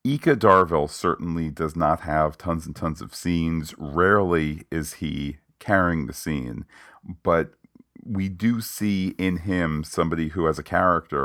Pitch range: 75-85 Hz